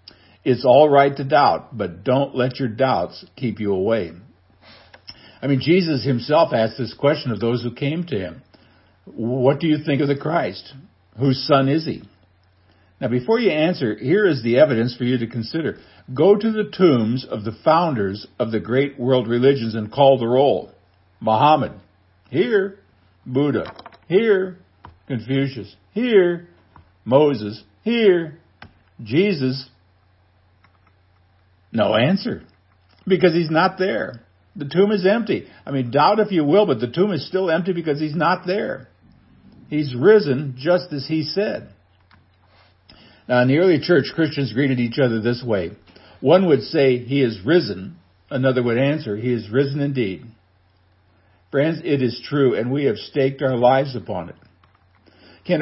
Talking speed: 155 wpm